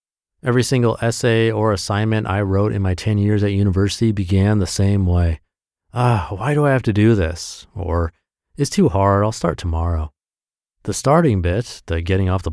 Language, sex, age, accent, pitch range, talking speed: English, male, 30-49, American, 90-125 Hz, 185 wpm